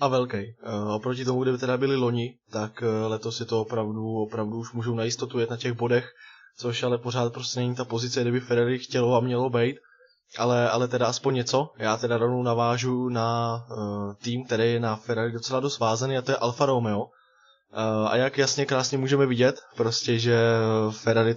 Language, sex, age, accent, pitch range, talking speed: Czech, male, 20-39, native, 115-125 Hz, 200 wpm